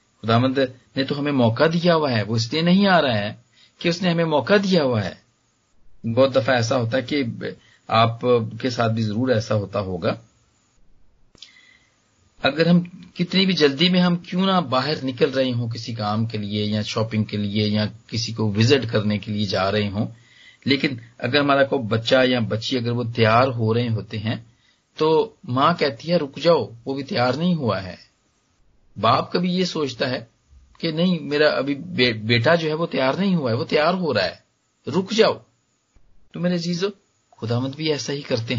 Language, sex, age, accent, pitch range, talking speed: English, male, 40-59, Indian, 115-170 Hz, 150 wpm